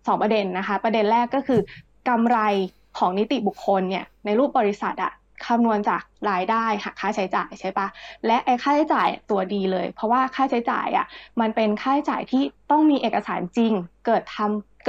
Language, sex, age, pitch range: Thai, female, 20-39, 200-250 Hz